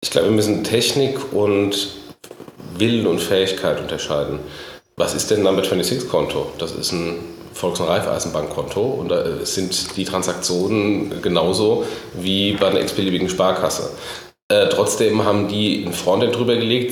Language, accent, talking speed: German, German, 145 wpm